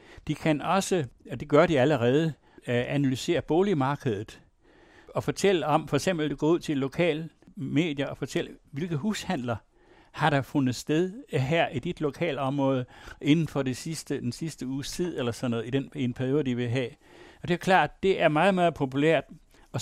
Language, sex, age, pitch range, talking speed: Danish, male, 60-79, 130-165 Hz, 185 wpm